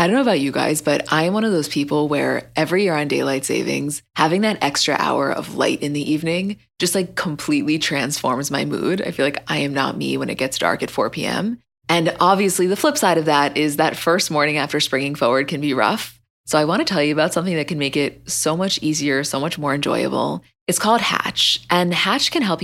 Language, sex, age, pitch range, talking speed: English, female, 20-39, 145-175 Hz, 240 wpm